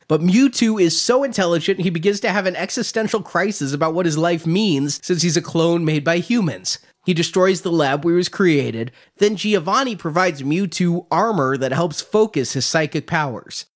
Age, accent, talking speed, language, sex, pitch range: 30-49, American, 190 wpm, English, male, 145-190 Hz